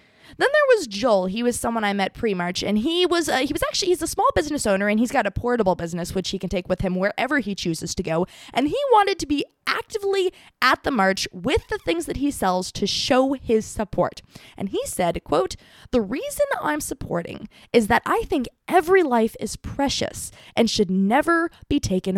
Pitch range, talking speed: 190-290 Hz, 215 wpm